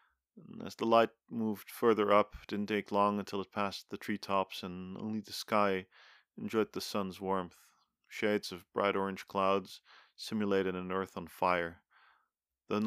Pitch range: 95-105 Hz